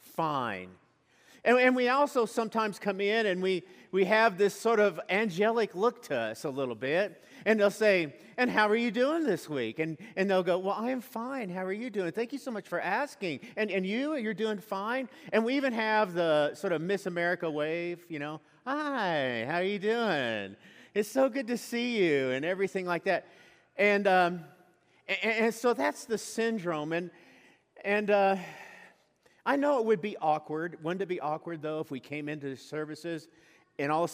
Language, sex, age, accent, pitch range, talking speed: English, male, 50-69, American, 160-220 Hz, 200 wpm